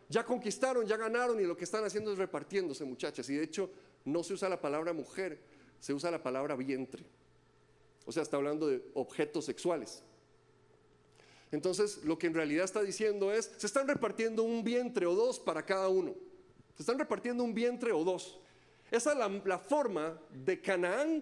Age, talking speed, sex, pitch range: 40-59, 180 wpm, male, 175-245 Hz